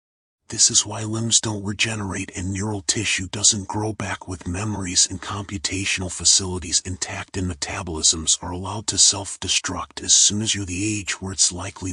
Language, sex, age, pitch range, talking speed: English, male, 40-59, 90-105 Hz, 170 wpm